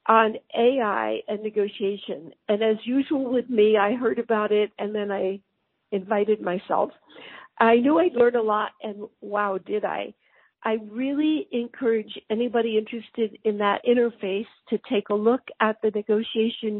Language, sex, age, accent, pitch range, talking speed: English, female, 60-79, American, 210-245 Hz, 155 wpm